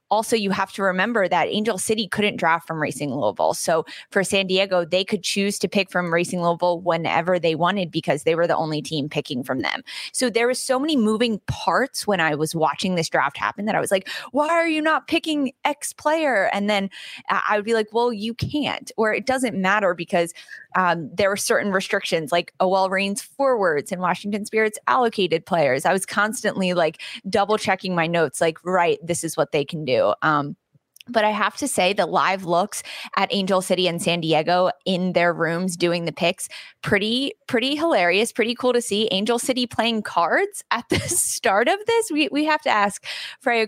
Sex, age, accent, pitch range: female, 20-39, American, 175-230 Hz